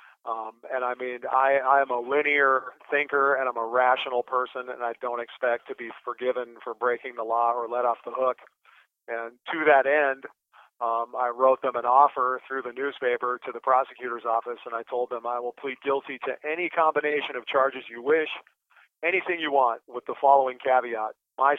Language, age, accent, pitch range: English, 40-59, American, 120-140 Hz